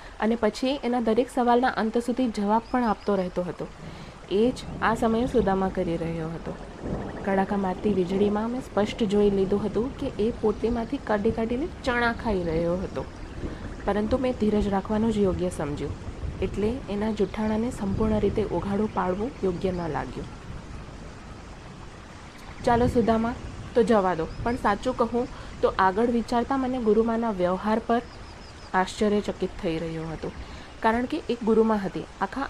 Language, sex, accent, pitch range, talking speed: Gujarati, female, native, 190-230 Hz, 145 wpm